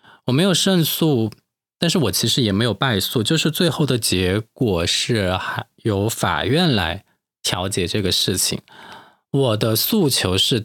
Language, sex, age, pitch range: Chinese, male, 20-39, 100-135 Hz